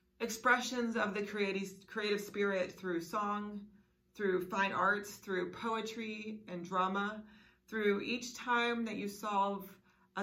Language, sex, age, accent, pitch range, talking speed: English, female, 30-49, American, 160-210 Hz, 130 wpm